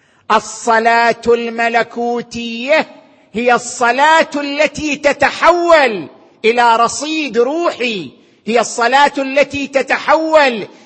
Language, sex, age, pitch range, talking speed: Arabic, male, 50-69, 230-285 Hz, 70 wpm